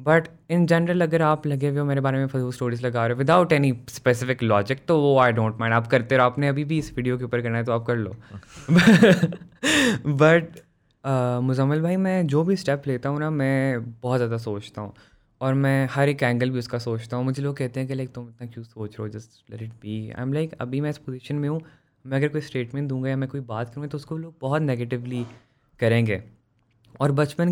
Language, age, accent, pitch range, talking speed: English, 20-39, Indian, 115-145 Hz, 140 wpm